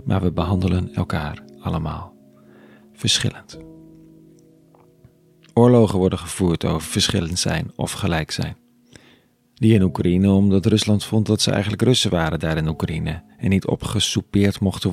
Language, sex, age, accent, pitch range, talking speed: Dutch, male, 40-59, Dutch, 90-120 Hz, 135 wpm